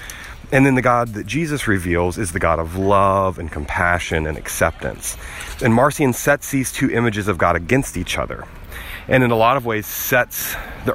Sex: male